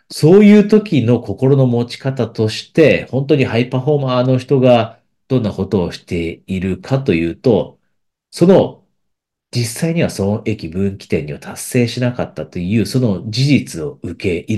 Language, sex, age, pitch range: Japanese, male, 40-59, 90-130 Hz